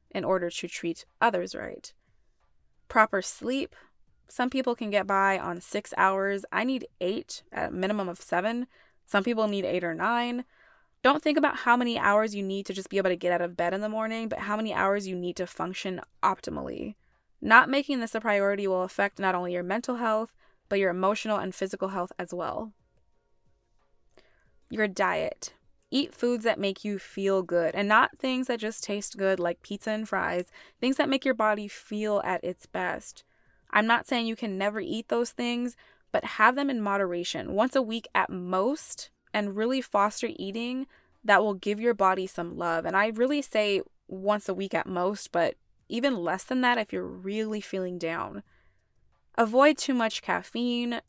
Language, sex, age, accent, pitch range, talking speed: English, female, 20-39, American, 190-235 Hz, 190 wpm